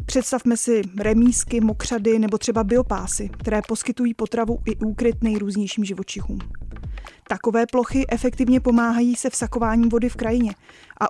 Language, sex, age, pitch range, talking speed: Czech, female, 20-39, 215-235 Hz, 130 wpm